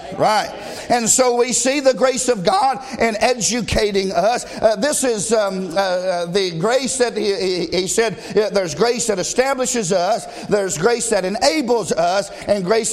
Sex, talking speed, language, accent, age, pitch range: male, 170 wpm, English, American, 50-69, 220-285 Hz